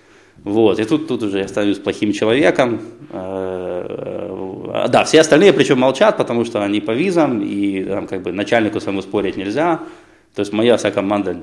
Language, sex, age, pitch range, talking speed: Ukrainian, male, 20-39, 100-120 Hz, 175 wpm